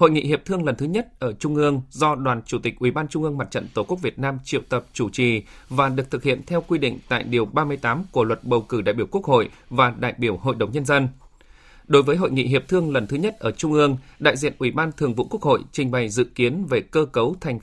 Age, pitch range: 20-39, 125-155 Hz